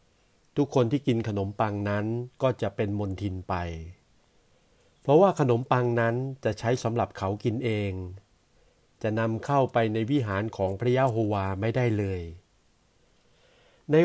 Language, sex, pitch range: Thai, male, 100-125 Hz